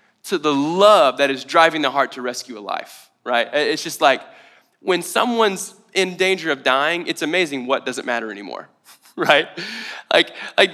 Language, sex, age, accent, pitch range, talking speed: English, male, 20-39, American, 145-200 Hz, 175 wpm